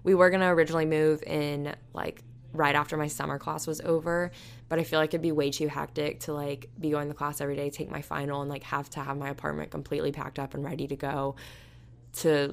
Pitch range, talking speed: 125-155 Hz, 240 wpm